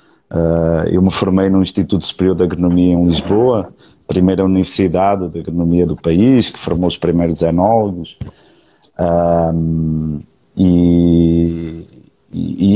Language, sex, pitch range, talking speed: Portuguese, male, 90-125 Hz, 120 wpm